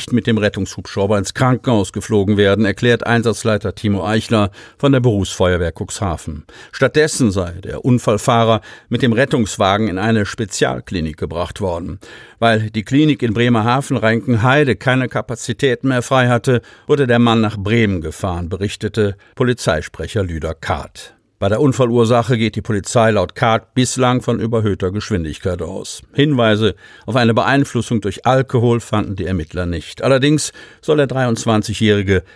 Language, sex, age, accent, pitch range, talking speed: German, male, 50-69, German, 100-130 Hz, 140 wpm